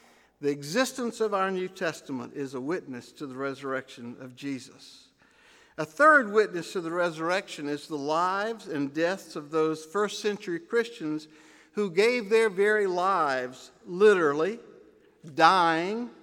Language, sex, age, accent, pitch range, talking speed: English, male, 60-79, American, 155-220 Hz, 135 wpm